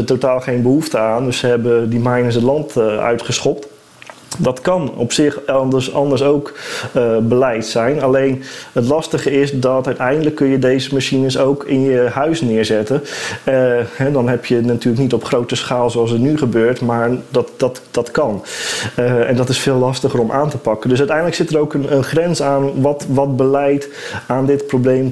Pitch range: 120-140 Hz